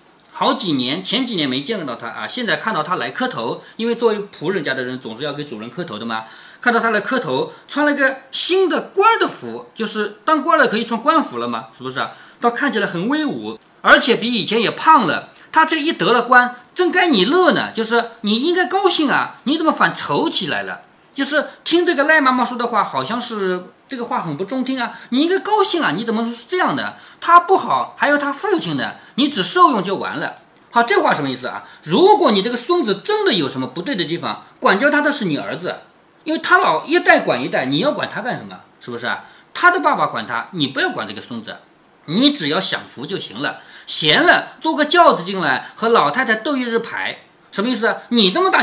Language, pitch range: Chinese, 220-330 Hz